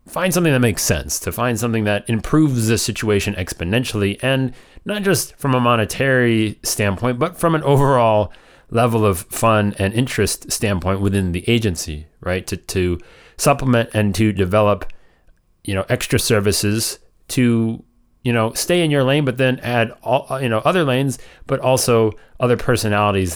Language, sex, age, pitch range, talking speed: English, male, 30-49, 100-125 Hz, 160 wpm